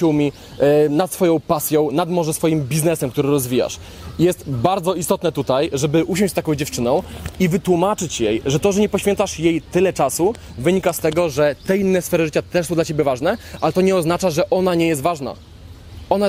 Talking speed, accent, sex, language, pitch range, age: 190 wpm, native, male, Polish, 155-185 Hz, 20-39